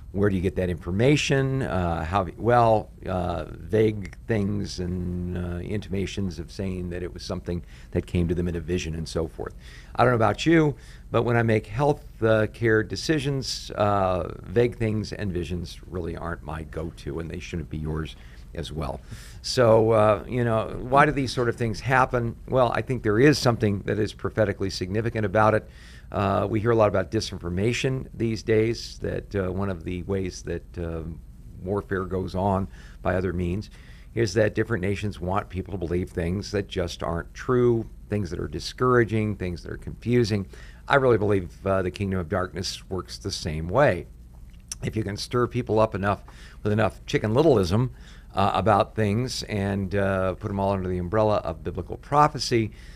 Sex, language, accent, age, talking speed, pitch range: male, English, American, 50-69, 185 wpm, 90-110 Hz